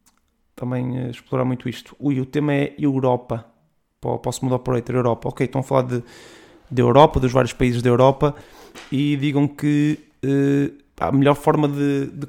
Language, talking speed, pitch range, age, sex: Portuguese, 170 wpm, 125-145 Hz, 20-39, male